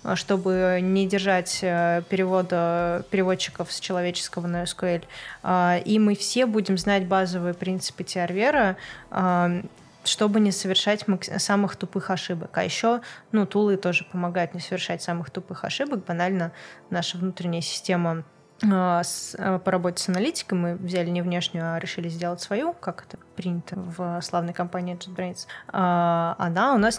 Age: 20-39